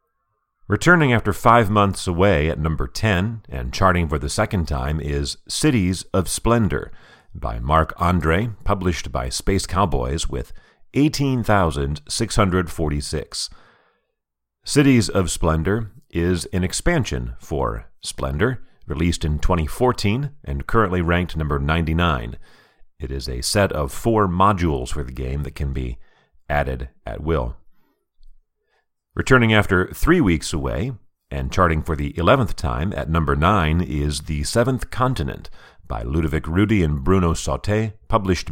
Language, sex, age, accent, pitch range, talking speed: English, male, 40-59, American, 75-105 Hz, 130 wpm